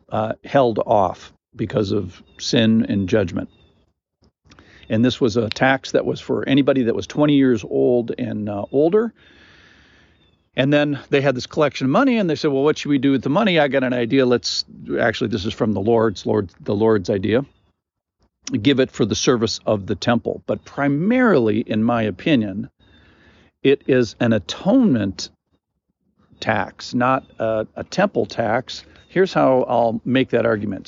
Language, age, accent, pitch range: English, 50-69, American, 110-140 Hz